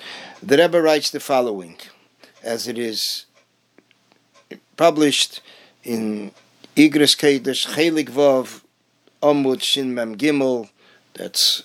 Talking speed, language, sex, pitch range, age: 100 wpm, English, male, 125-150 Hz, 50-69